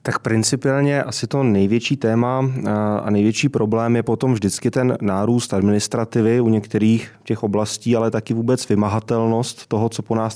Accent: native